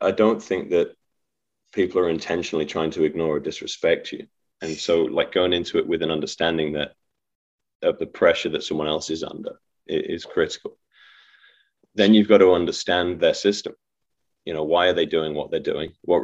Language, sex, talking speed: English, male, 185 wpm